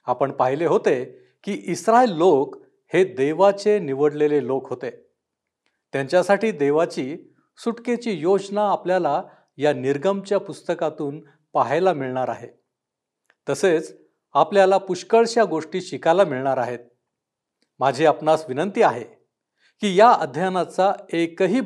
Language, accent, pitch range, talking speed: Marathi, native, 145-190 Hz, 105 wpm